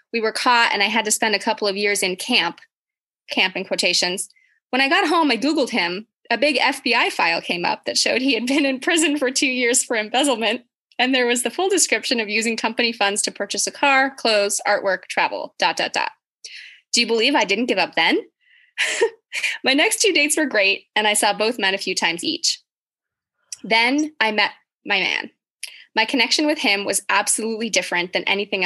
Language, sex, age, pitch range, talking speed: English, female, 20-39, 205-305 Hz, 205 wpm